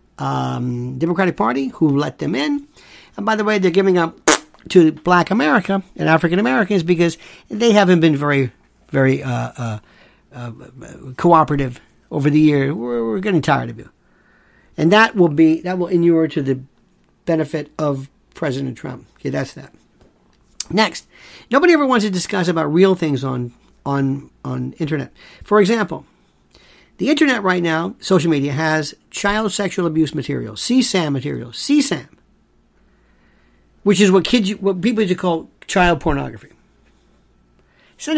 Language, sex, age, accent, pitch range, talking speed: English, male, 50-69, American, 155-210 Hz, 150 wpm